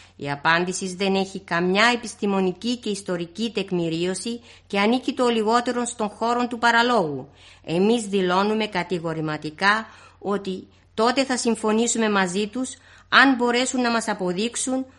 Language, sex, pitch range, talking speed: Greek, female, 180-235 Hz, 125 wpm